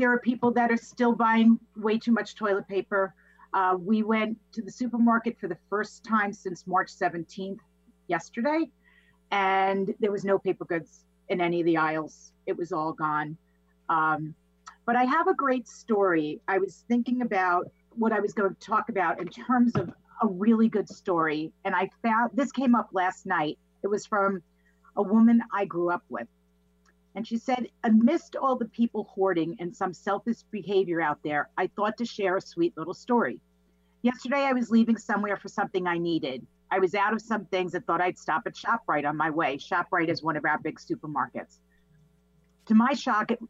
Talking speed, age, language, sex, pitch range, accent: 195 wpm, 40-59, English, female, 165-225 Hz, American